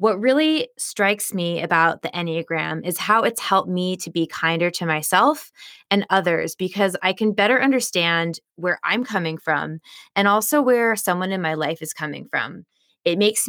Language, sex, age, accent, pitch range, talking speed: English, female, 20-39, American, 165-205 Hz, 180 wpm